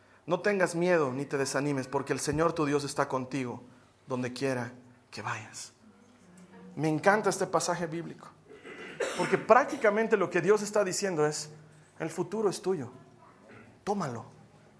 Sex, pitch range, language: male, 145-210 Hz, Spanish